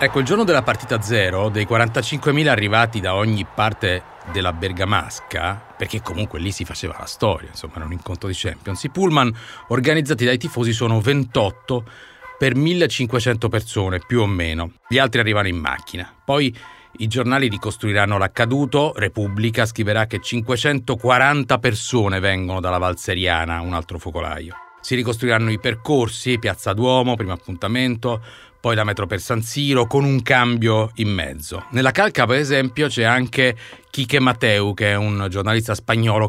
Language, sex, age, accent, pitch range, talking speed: Italian, male, 40-59, native, 100-130 Hz, 155 wpm